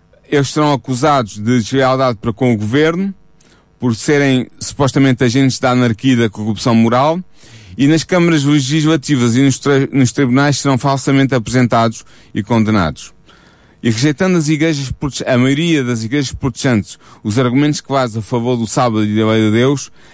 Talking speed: 165 wpm